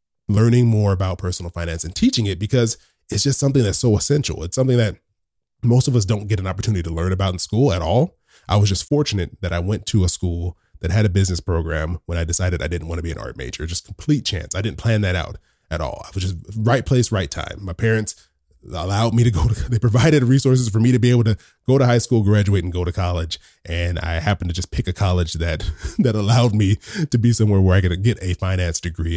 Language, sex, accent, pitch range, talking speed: English, male, American, 90-115 Hz, 250 wpm